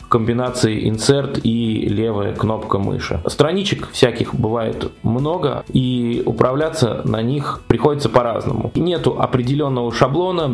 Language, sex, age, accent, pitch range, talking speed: Russian, male, 20-39, native, 115-140 Hz, 110 wpm